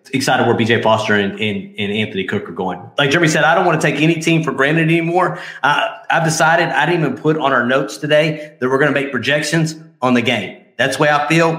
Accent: American